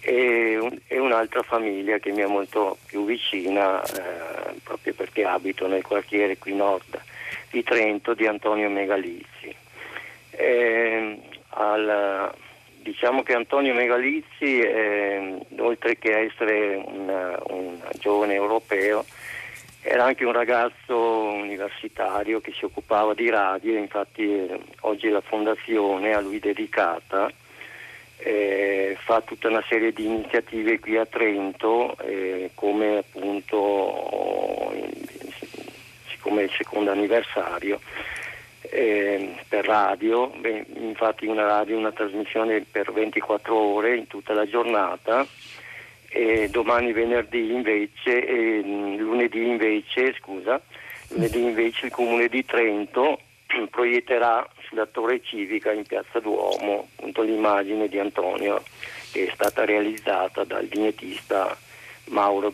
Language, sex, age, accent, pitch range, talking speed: Italian, male, 50-69, native, 100-115 Hz, 115 wpm